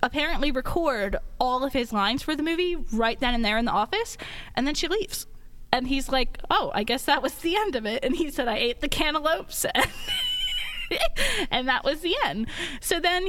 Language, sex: English, female